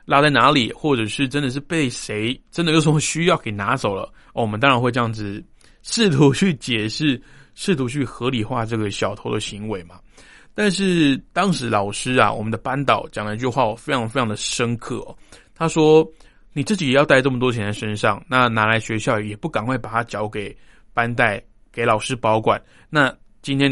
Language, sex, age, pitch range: Chinese, male, 20-39, 110-145 Hz